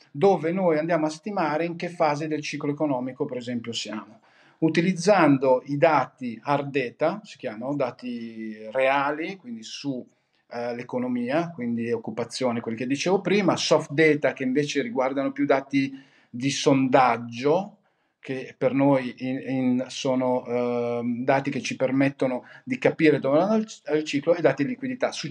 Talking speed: 150 wpm